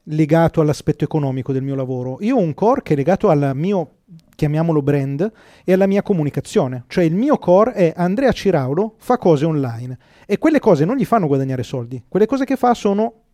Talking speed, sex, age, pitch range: 200 wpm, male, 30-49, 140-215 Hz